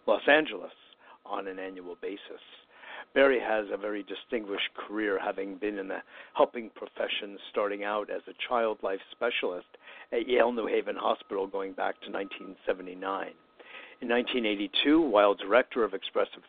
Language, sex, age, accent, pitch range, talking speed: English, male, 60-79, American, 95-125 Hz, 145 wpm